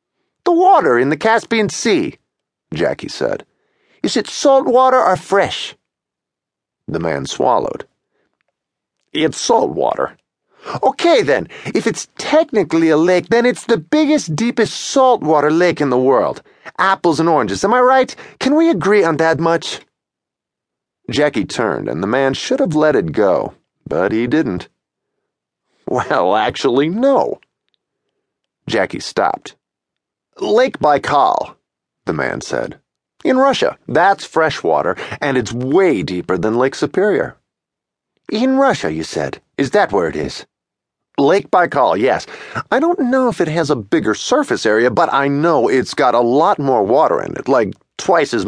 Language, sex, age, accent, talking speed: English, male, 40-59, American, 150 wpm